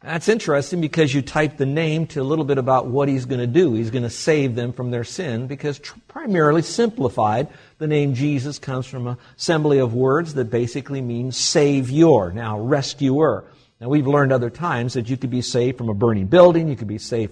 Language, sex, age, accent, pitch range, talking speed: English, male, 50-69, American, 110-140 Hz, 215 wpm